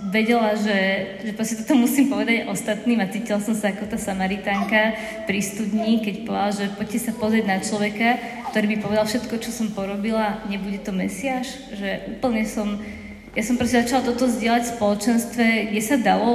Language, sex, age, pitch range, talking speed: Slovak, female, 20-39, 200-230 Hz, 175 wpm